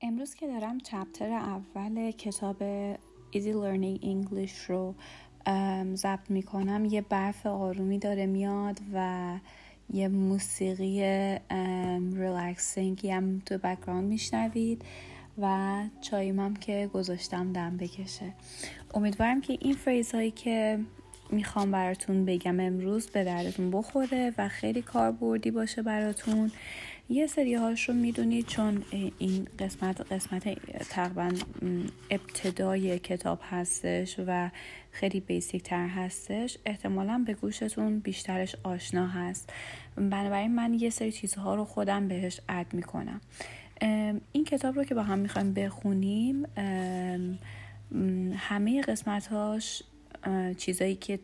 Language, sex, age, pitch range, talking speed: Persian, female, 30-49, 185-215 Hz, 115 wpm